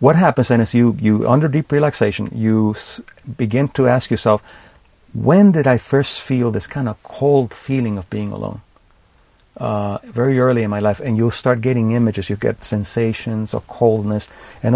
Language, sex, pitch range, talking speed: English, male, 110-135 Hz, 180 wpm